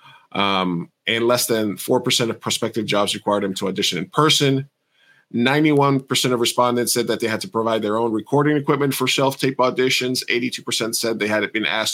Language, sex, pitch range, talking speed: English, male, 105-130 Hz, 180 wpm